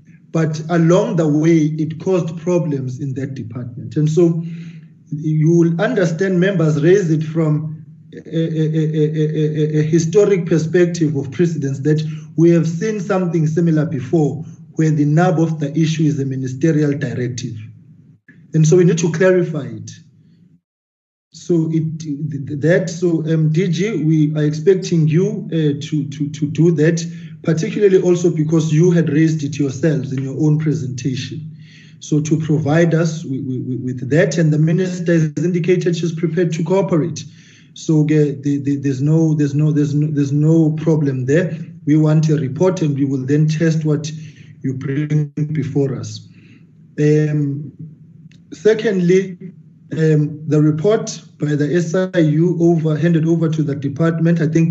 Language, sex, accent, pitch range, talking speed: English, male, South African, 150-170 Hz, 145 wpm